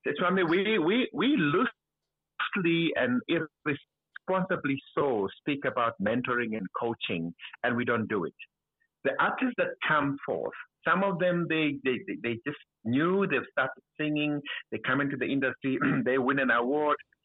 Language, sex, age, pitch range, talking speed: English, male, 60-79, 120-180 Hz, 150 wpm